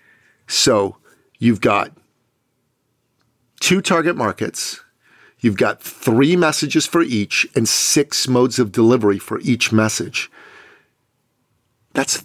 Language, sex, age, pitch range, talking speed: English, male, 40-59, 105-130 Hz, 105 wpm